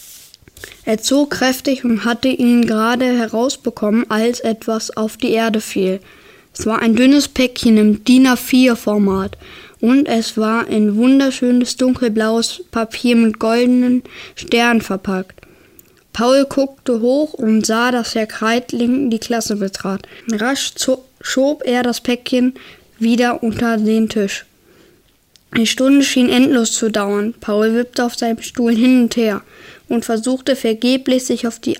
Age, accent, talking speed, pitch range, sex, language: 20-39, German, 140 wpm, 220-250 Hz, female, German